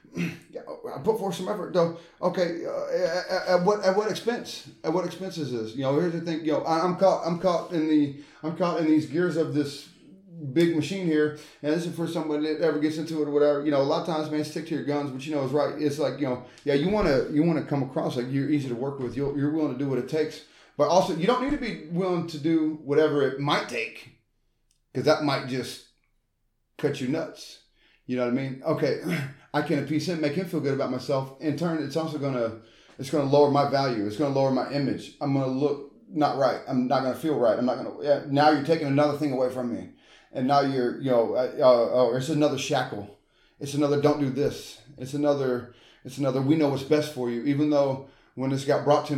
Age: 30-49